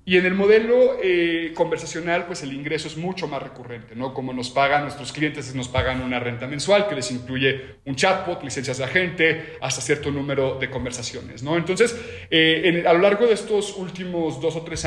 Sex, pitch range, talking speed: male, 130-150 Hz, 200 wpm